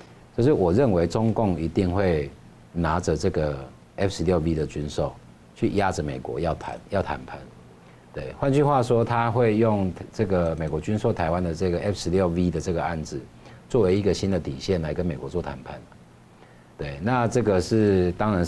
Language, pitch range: Chinese, 75-100 Hz